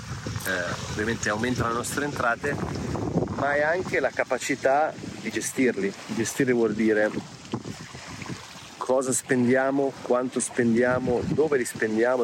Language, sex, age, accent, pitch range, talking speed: Italian, male, 40-59, native, 110-130 Hz, 115 wpm